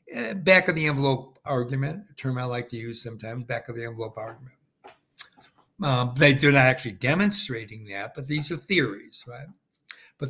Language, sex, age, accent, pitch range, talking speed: English, male, 60-79, American, 120-150 Hz, 170 wpm